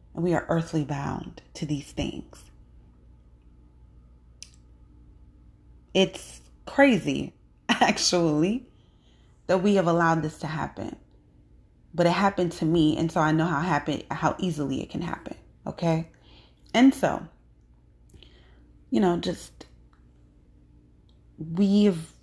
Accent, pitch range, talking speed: American, 140-200 Hz, 110 wpm